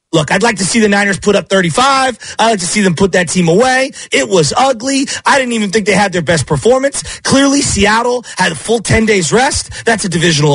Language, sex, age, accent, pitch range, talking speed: English, male, 30-49, American, 175-245 Hz, 240 wpm